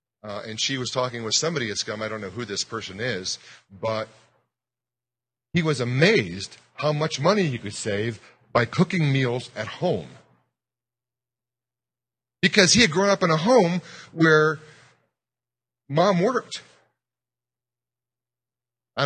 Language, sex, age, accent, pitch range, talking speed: English, male, 40-59, American, 120-155 Hz, 130 wpm